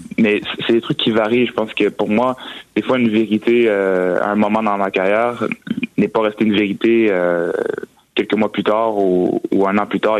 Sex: male